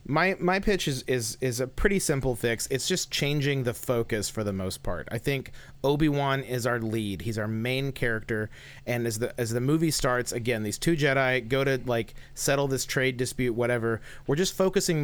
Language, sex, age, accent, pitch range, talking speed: English, male, 30-49, American, 120-140 Hz, 205 wpm